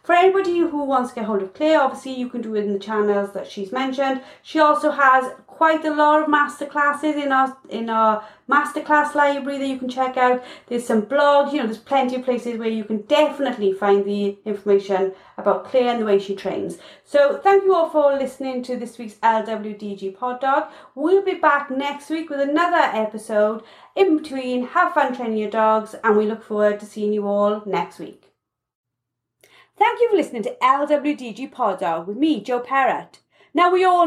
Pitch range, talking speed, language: 210-300 Hz, 205 wpm, English